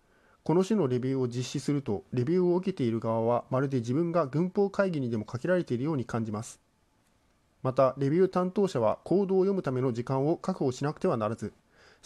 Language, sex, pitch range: Japanese, male, 120-180 Hz